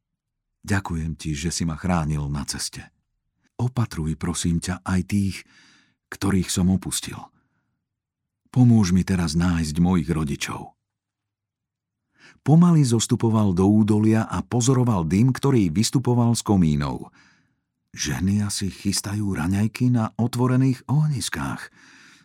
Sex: male